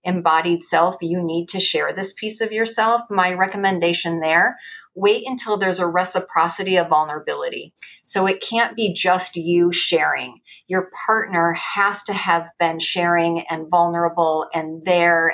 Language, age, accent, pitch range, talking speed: English, 40-59, American, 170-205 Hz, 150 wpm